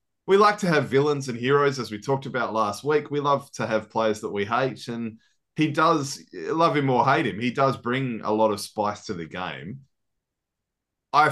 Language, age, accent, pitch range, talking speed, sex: English, 20-39, Australian, 105-140 Hz, 210 wpm, male